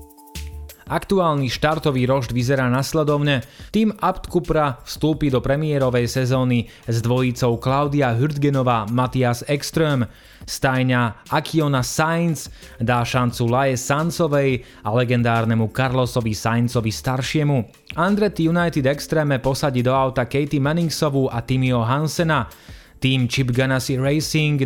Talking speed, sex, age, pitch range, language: 110 wpm, male, 20-39, 120-150 Hz, Slovak